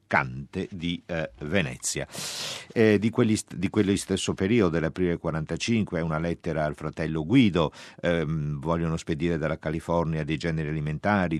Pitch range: 75-95 Hz